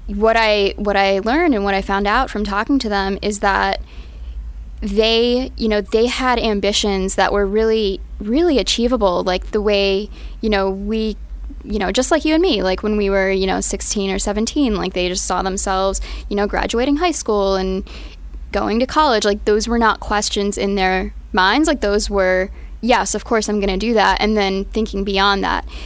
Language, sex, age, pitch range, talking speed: English, female, 10-29, 195-220 Hz, 200 wpm